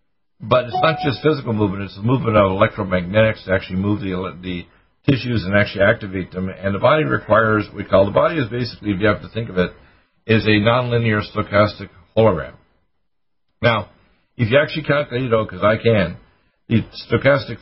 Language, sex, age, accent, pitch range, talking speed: English, male, 60-79, American, 95-115 Hz, 195 wpm